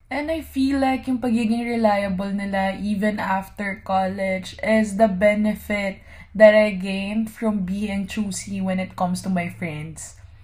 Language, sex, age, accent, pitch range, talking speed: English, female, 20-39, Filipino, 195-260 Hz, 150 wpm